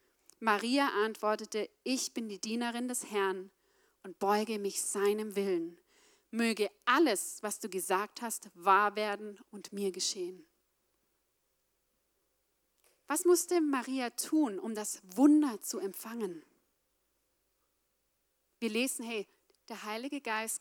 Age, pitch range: 30-49, 215-300 Hz